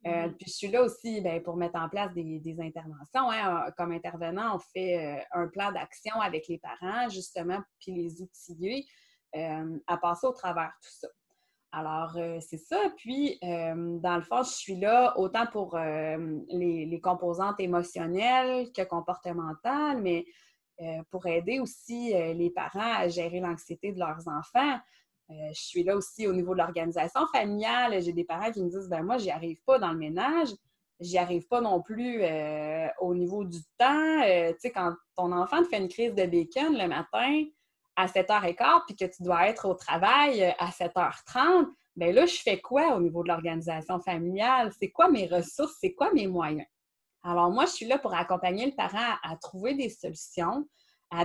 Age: 20-39